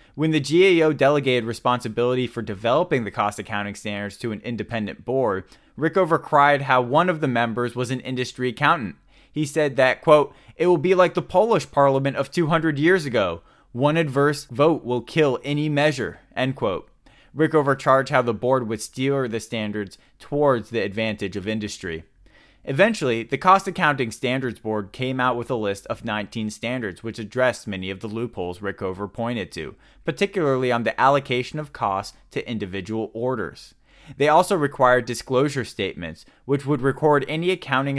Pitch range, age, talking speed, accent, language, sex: 110-145 Hz, 20-39, 165 wpm, American, English, male